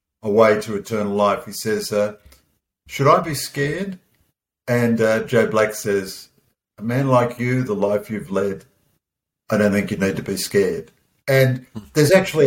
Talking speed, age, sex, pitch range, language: 175 wpm, 50-69, male, 105-140 Hz, English